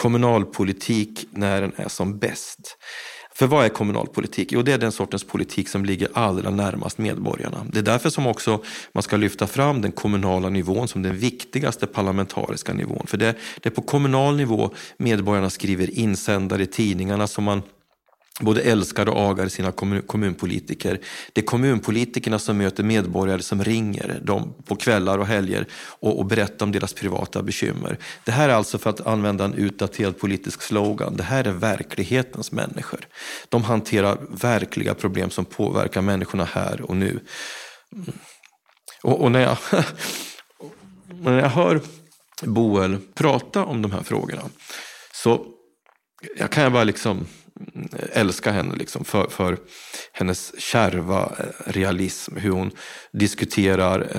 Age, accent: 40-59, native